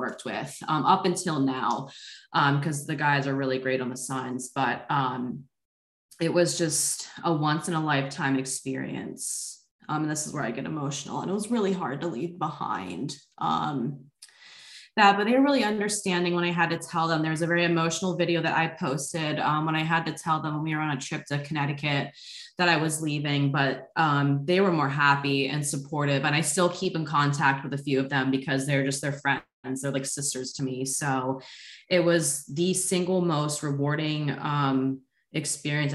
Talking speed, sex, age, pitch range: 205 wpm, female, 20-39, 135-170 Hz